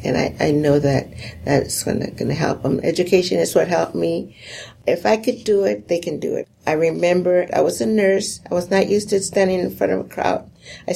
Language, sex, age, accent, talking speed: English, female, 60-79, American, 230 wpm